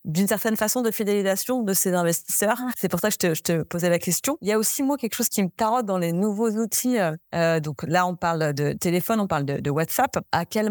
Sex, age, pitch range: female, 30-49, 175-225 Hz